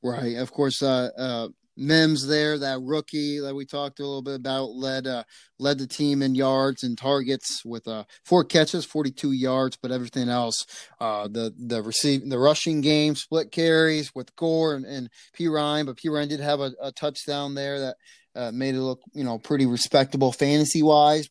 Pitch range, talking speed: 135-170 Hz, 190 wpm